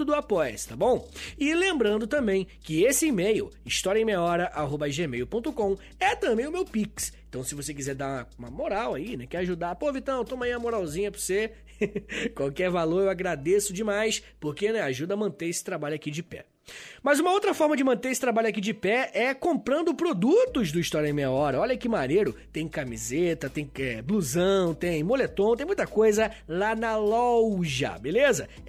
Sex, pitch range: male, 165-240 Hz